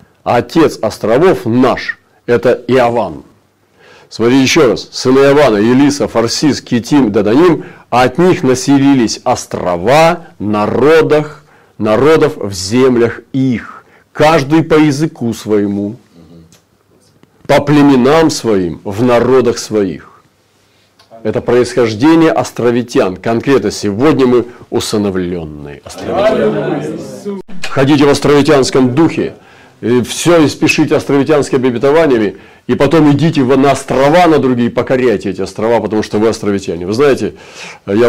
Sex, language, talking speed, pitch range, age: male, Russian, 105 wpm, 100-140 Hz, 40-59